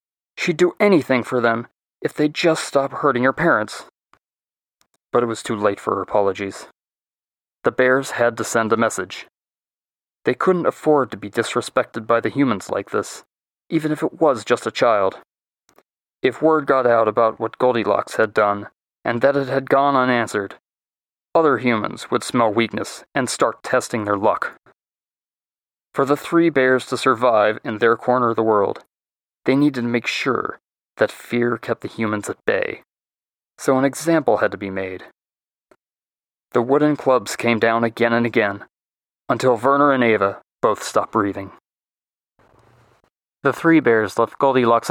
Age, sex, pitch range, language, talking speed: 30-49, male, 115-145 Hz, English, 160 wpm